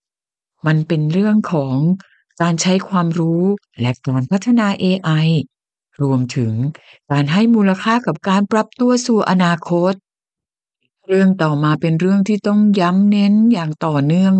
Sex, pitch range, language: female, 150-225 Hz, Thai